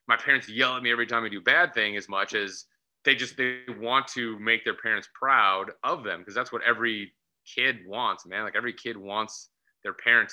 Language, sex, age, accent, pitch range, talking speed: English, male, 30-49, American, 110-130 Hz, 220 wpm